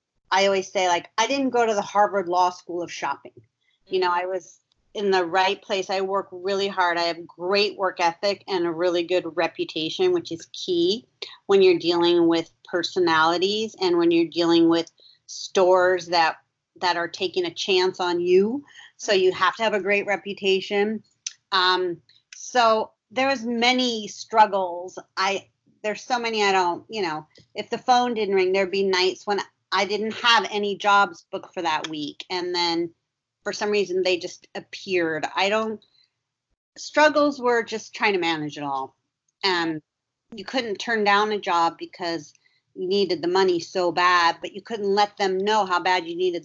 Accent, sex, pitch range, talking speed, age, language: American, female, 170-205 Hz, 180 wpm, 40-59, English